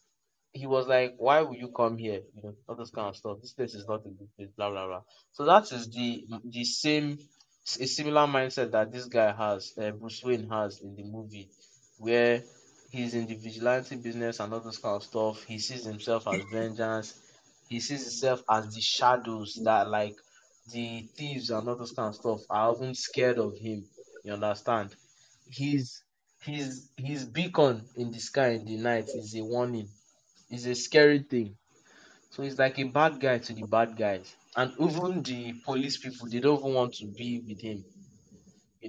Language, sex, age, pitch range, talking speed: English, male, 20-39, 110-130 Hz, 195 wpm